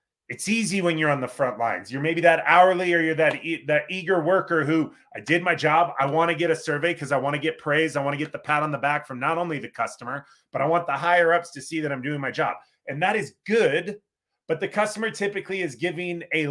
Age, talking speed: 30-49, 260 wpm